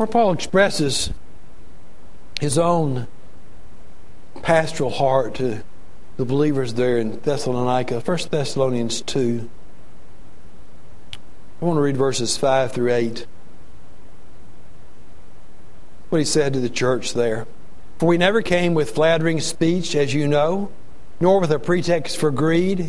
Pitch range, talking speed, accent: 125-170 Hz, 125 wpm, American